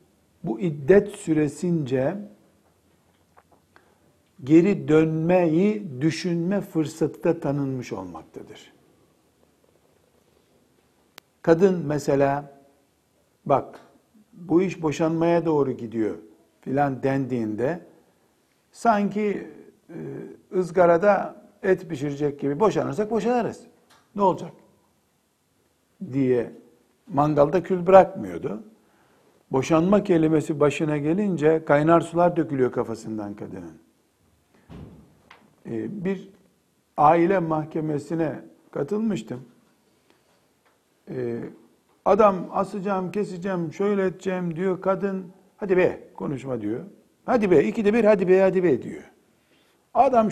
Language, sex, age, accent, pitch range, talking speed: Turkish, male, 60-79, native, 145-195 Hz, 80 wpm